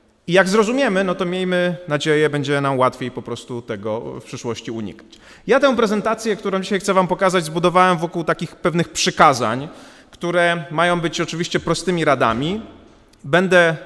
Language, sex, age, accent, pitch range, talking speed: Polish, male, 30-49, native, 145-195 Hz, 155 wpm